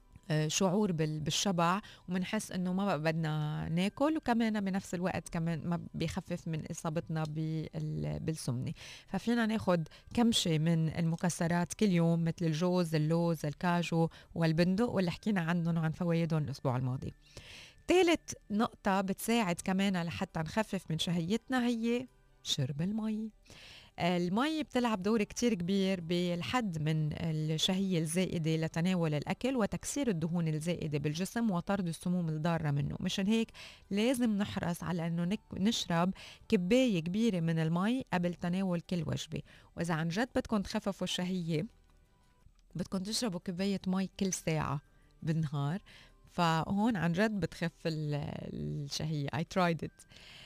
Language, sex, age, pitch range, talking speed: Arabic, female, 20-39, 160-200 Hz, 120 wpm